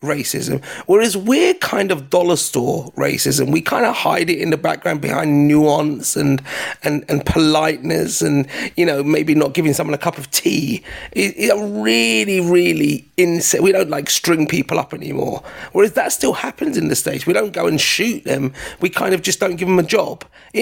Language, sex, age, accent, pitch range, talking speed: English, male, 30-49, British, 145-190 Hz, 200 wpm